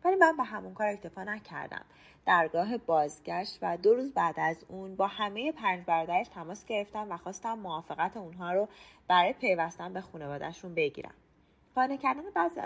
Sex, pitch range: female, 170-250 Hz